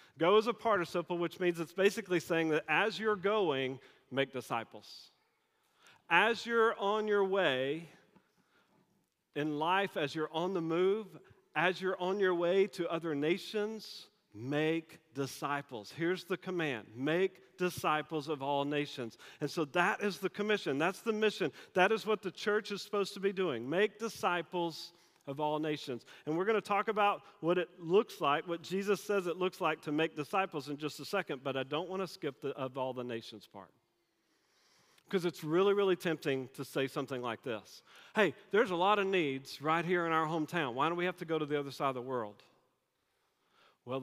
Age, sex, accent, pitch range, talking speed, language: 40-59, male, American, 145-195 Hz, 190 wpm, English